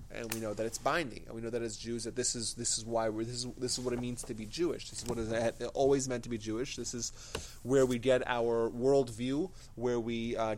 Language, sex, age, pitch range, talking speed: English, male, 30-49, 115-140 Hz, 280 wpm